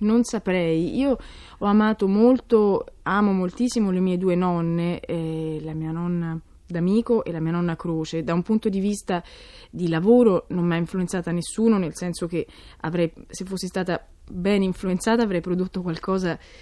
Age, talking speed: 20-39, 165 wpm